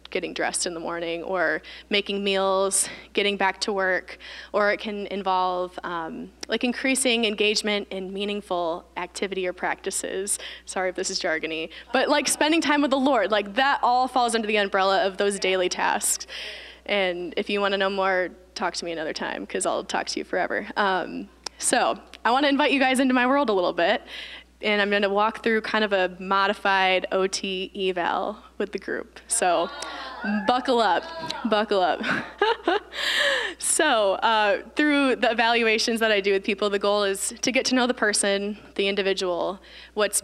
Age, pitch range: 10-29, 190-230 Hz